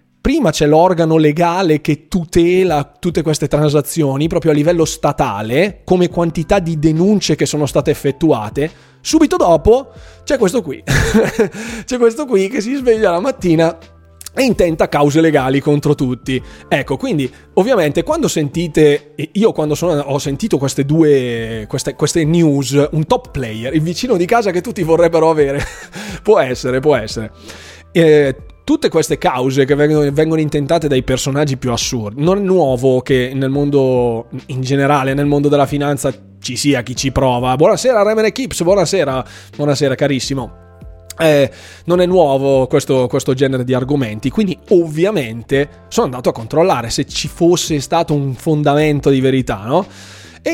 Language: Italian